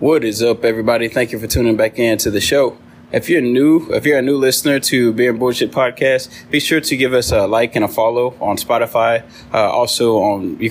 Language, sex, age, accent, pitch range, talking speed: English, male, 20-39, American, 110-130 Hz, 235 wpm